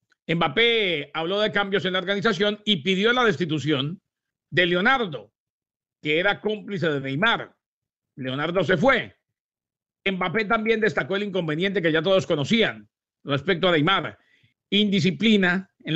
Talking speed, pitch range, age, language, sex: 130 wpm, 160-205 Hz, 50-69, English, male